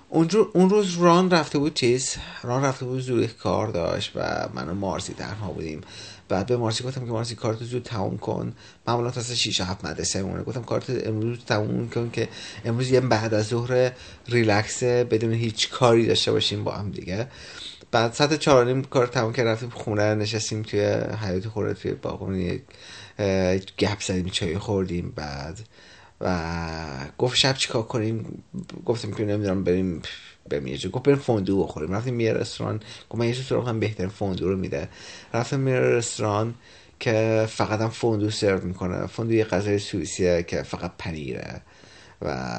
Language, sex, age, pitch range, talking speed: Persian, male, 30-49, 95-125 Hz, 160 wpm